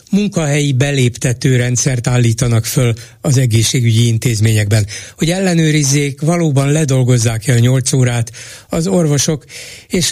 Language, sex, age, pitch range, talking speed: Hungarian, male, 60-79, 120-150 Hz, 105 wpm